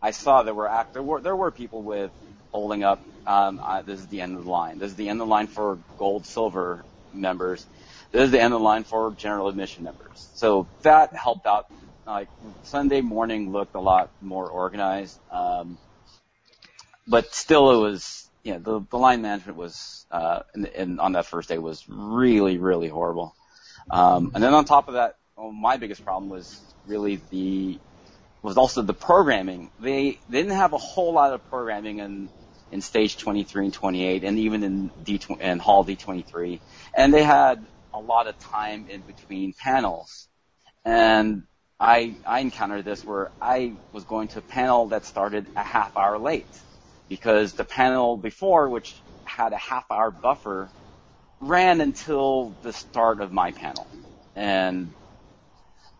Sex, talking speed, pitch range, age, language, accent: male, 180 wpm, 95-115 Hz, 30-49, English, American